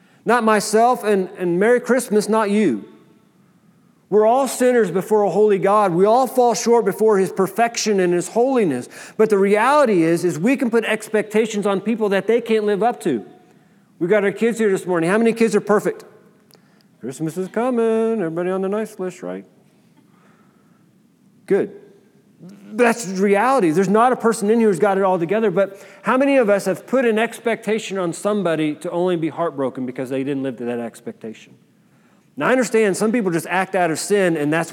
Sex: male